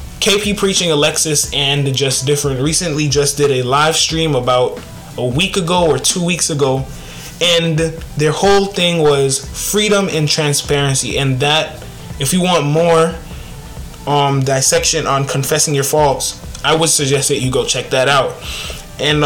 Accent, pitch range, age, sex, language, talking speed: American, 140-180 Hz, 20-39, male, English, 155 wpm